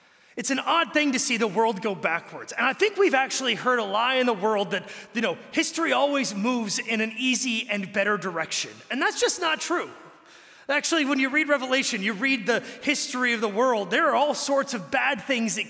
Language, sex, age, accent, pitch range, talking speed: English, male, 30-49, American, 185-245 Hz, 220 wpm